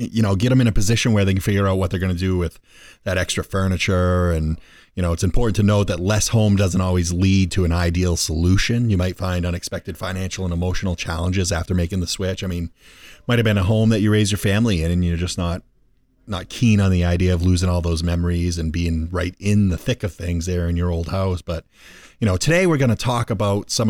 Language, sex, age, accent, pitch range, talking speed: English, male, 30-49, American, 90-105 Hz, 250 wpm